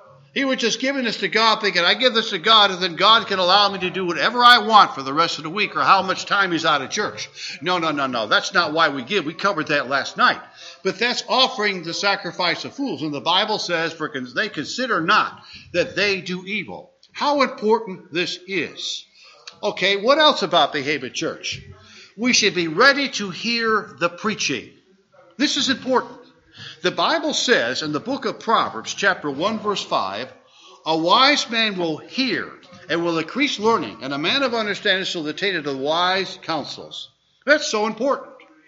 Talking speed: 195 wpm